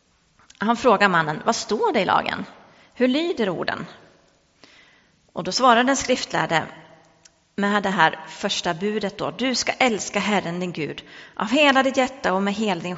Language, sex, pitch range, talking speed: English, female, 185-230 Hz, 165 wpm